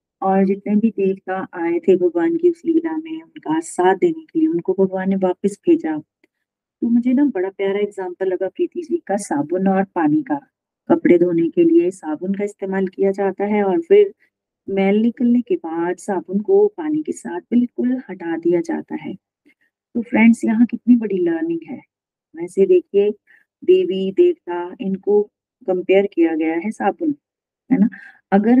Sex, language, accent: female, Hindi, native